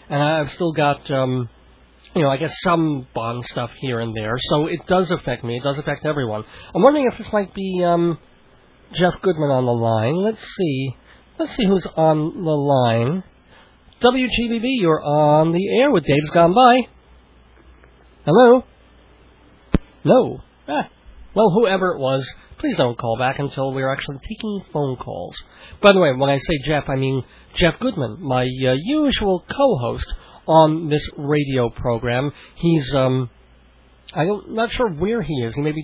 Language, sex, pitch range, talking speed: English, male, 130-180 Hz, 170 wpm